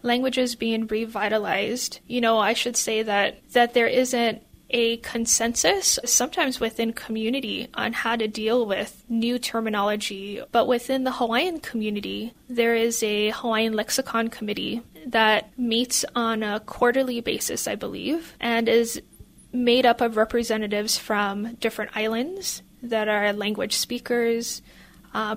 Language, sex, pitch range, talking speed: English, female, 220-250 Hz, 135 wpm